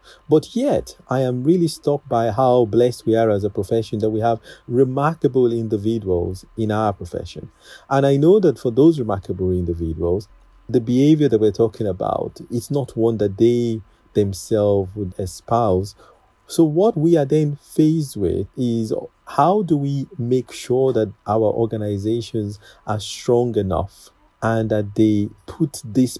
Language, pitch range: English, 105-135 Hz